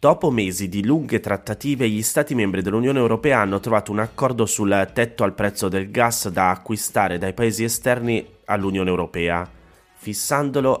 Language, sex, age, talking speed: Italian, male, 20-39, 155 wpm